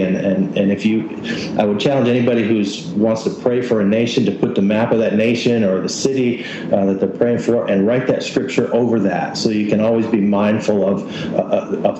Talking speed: 230 wpm